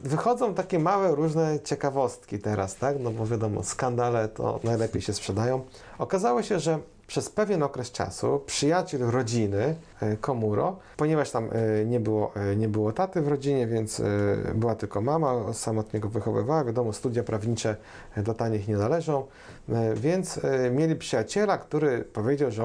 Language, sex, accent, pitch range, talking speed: Polish, male, native, 110-140 Hz, 145 wpm